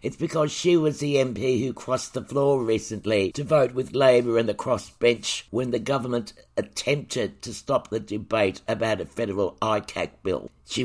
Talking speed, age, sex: 175 wpm, 60-79, male